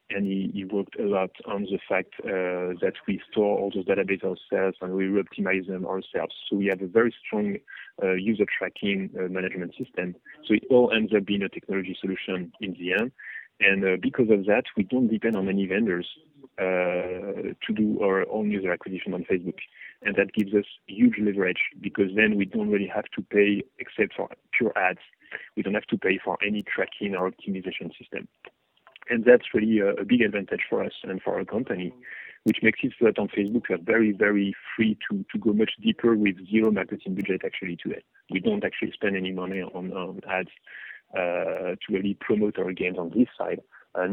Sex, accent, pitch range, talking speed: male, French, 95-110 Hz, 205 wpm